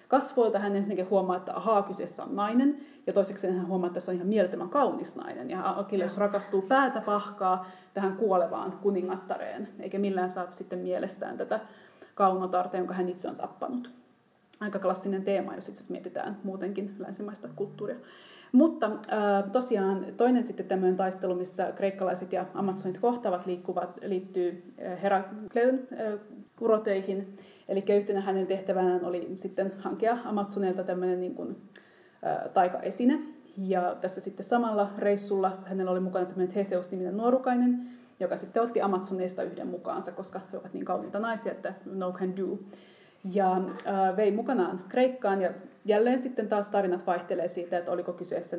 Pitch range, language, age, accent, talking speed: 185-210 Hz, Finnish, 20-39, native, 150 wpm